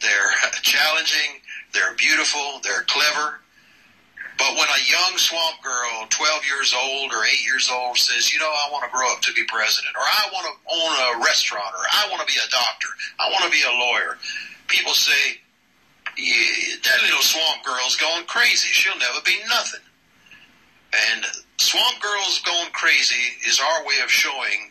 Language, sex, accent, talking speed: English, male, American, 175 wpm